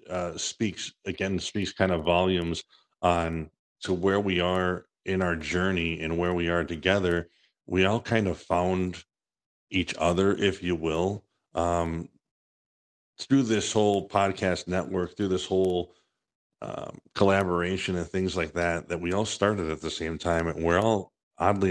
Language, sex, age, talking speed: English, male, 50-69, 160 wpm